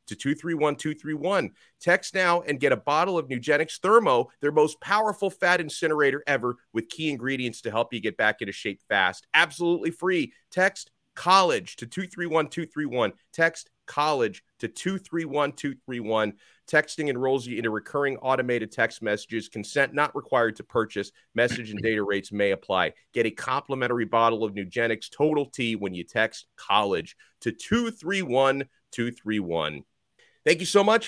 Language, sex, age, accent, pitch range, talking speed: English, male, 30-49, American, 115-160 Hz, 145 wpm